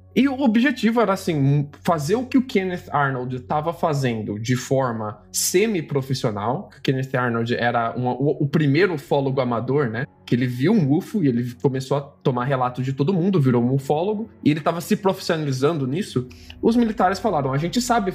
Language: Portuguese